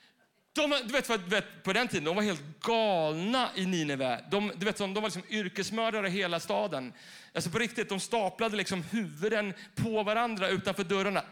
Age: 30-49